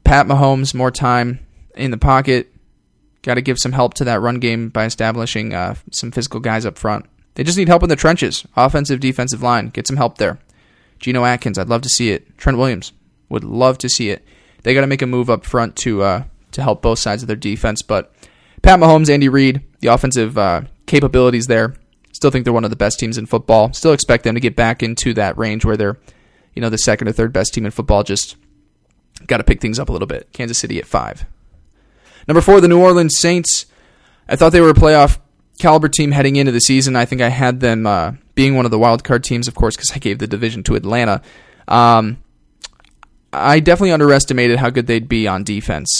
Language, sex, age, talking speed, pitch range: English, male, 10-29, 225 wpm, 110-135 Hz